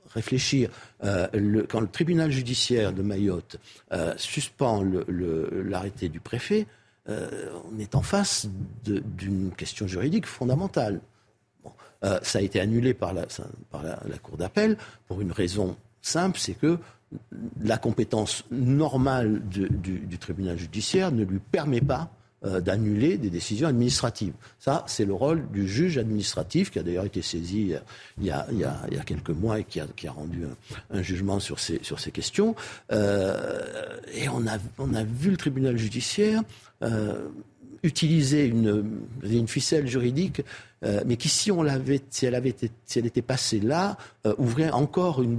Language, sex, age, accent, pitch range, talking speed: French, male, 60-79, French, 105-140 Hz, 170 wpm